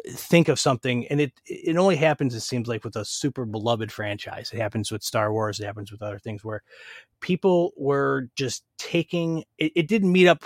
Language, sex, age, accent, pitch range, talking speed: English, male, 30-49, American, 120-160 Hz, 205 wpm